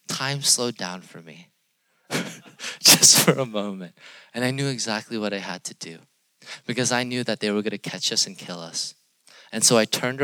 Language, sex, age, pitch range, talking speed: English, male, 20-39, 110-155 Hz, 205 wpm